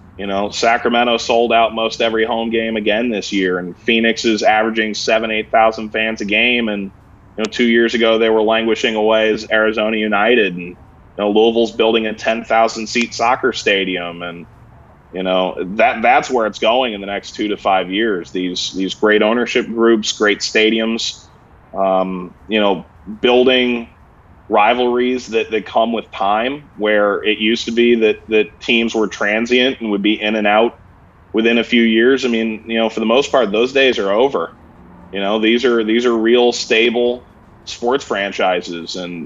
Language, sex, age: English, male, 20-39